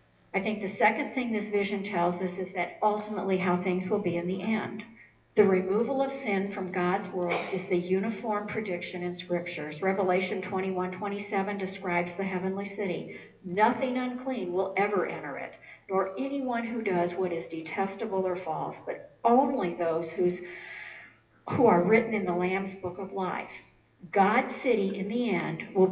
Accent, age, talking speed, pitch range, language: American, 60-79, 165 wpm, 180-210 Hz, English